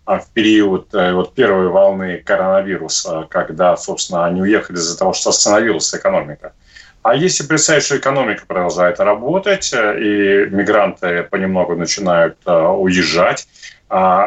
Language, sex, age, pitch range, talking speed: Russian, male, 30-49, 95-140 Hz, 110 wpm